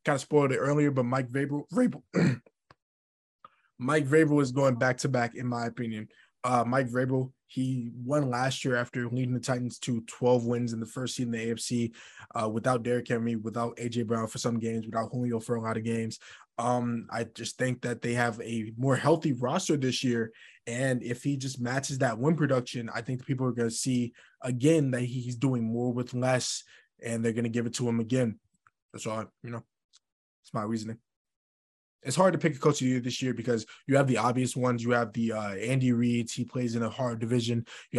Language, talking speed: English, 215 wpm